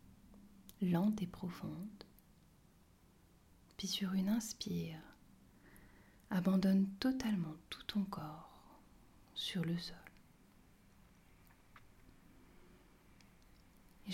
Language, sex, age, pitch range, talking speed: French, female, 30-49, 175-210 Hz, 70 wpm